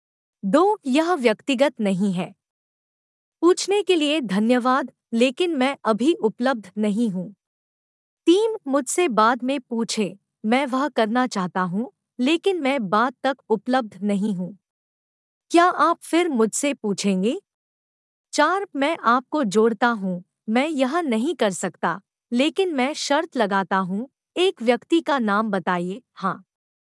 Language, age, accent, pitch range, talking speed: Hindi, 50-69, native, 210-300 Hz, 130 wpm